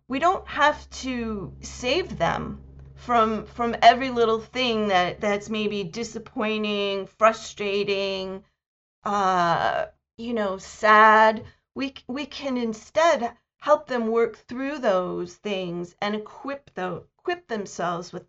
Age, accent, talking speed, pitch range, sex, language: 40-59, American, 120 wpm, 195-245 Hz, female, English